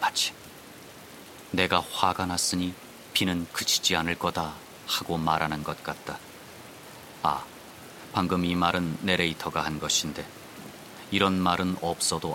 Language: Korean